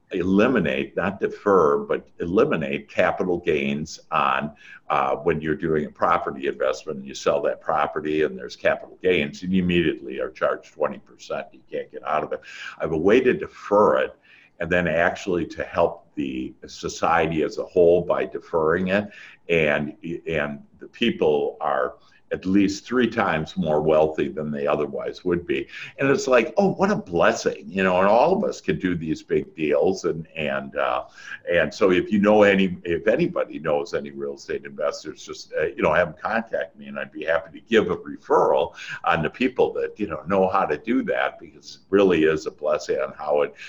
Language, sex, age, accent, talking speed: English, male, 60-79, American, 195 wpm